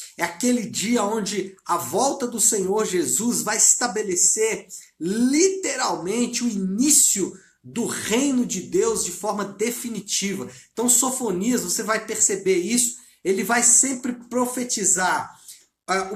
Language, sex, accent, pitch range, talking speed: Portuguese, male, Brazilian, 200-255 Hz, 120 wpm